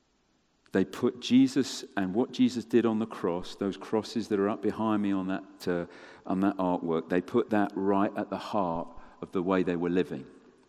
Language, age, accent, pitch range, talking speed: English, 50-69, British, 85-110 Hz, 200 wpm